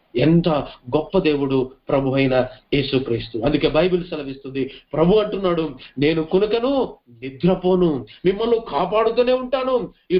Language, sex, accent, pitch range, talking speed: Telugu, male, native, 150-235 Hz, 110 wpm